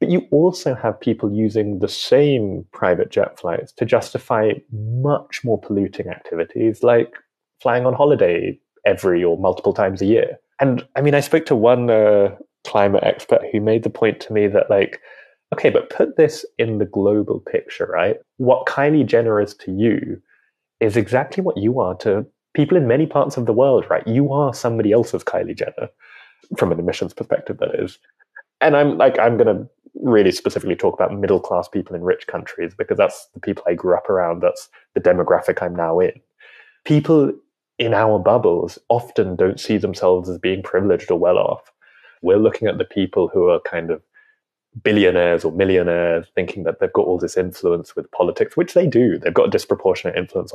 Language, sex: English, male